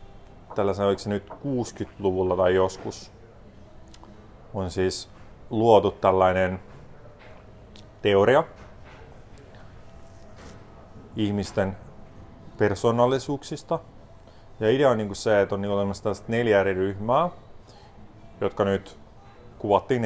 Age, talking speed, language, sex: 30-49, 90 wpm, Finnish, male